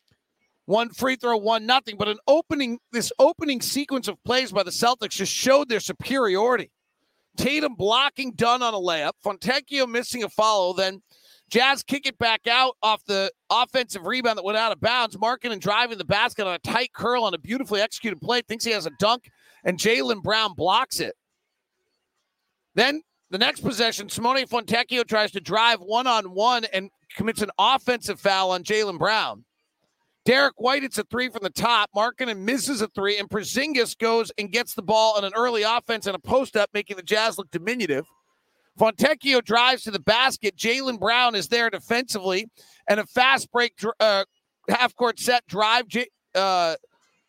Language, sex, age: English, male, 40-59